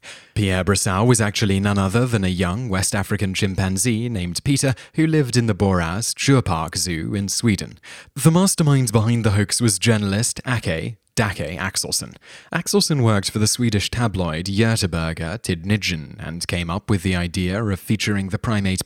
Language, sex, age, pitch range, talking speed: English, male, 20-39, 90-120 Hz, 160 wpm